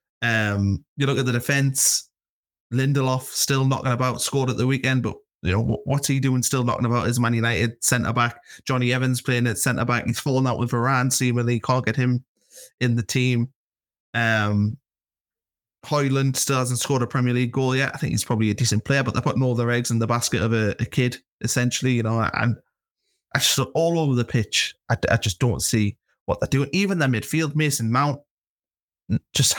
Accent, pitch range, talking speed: British, 115-140 Hz, 210 wpm